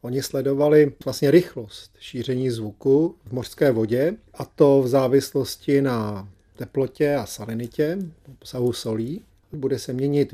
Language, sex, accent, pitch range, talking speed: Czech, male, native, 120-155 Hz, 130 wpm